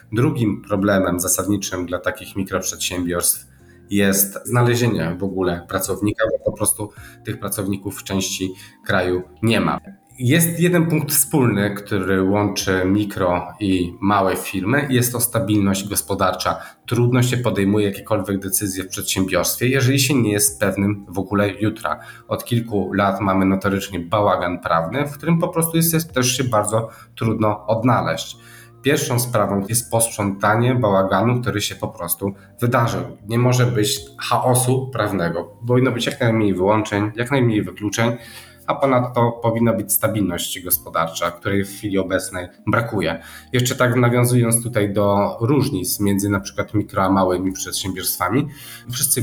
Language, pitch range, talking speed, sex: Polish, 95-120 Hz, 140 wpm, male